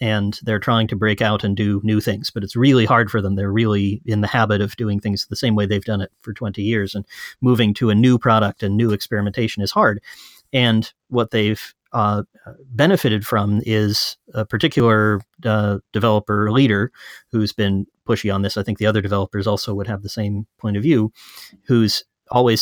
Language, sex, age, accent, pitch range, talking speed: English, male, 30-49, American, 105-120 Hz, 200 wpm